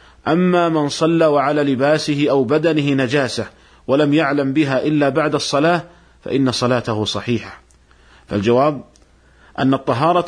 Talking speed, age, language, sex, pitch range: 115 wpm, 50-69, Arabic, male, 120-150 Hz